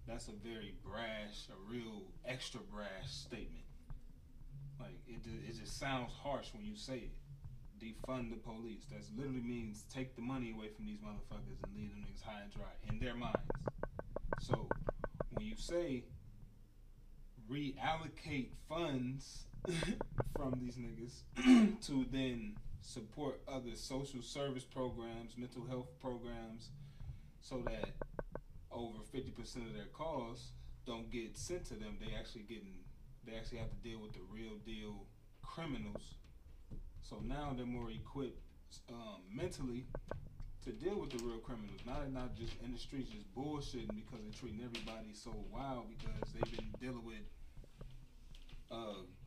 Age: 20-39